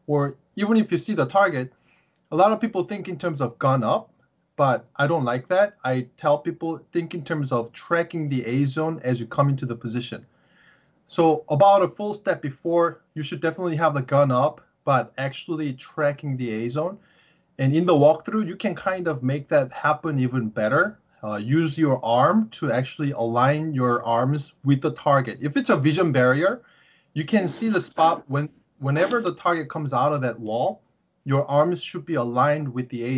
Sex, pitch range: male, 130-170 Hz